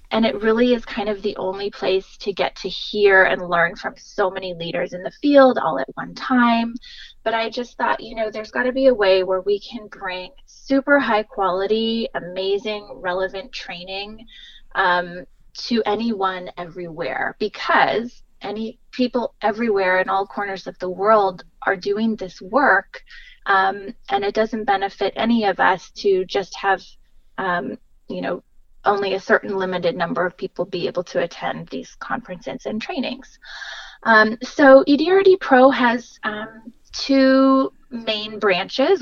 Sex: female